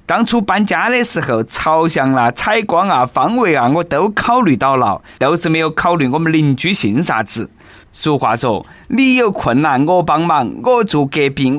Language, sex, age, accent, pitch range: Chinese, male, 20-39, native, 135-190 Hz